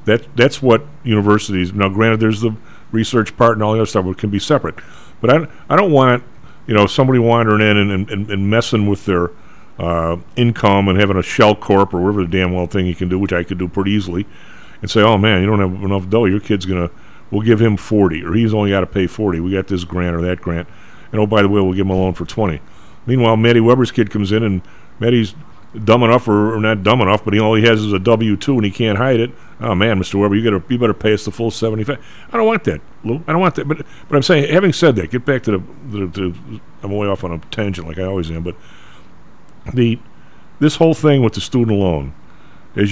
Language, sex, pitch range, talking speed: English, male, 95-115 Hz, 250 wpm